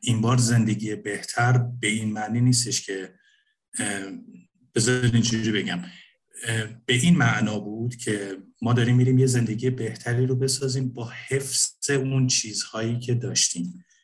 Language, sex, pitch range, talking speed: Persian, male, 105-125 Hz, 135 wpm